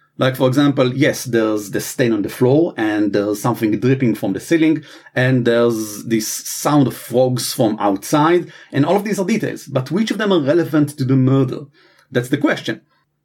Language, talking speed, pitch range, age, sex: English, 195 wpm, 130-175 Hz, 40-59, male